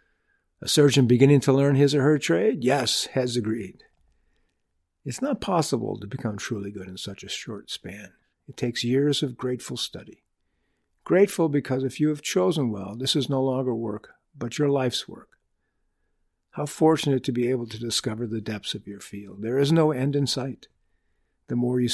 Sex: male